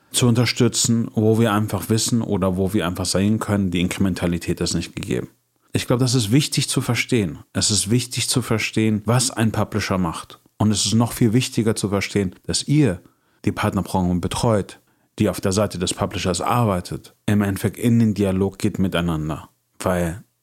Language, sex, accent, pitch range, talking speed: German, male, German, 90-115 Hz, 180 wpm